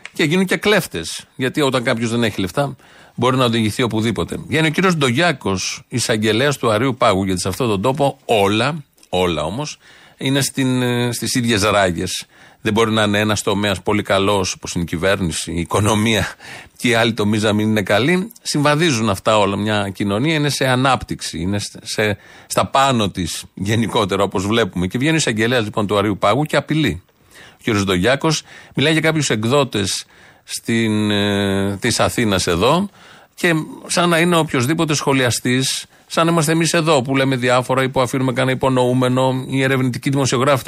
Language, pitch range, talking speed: Greek, 105-145 Hz, 170 wpm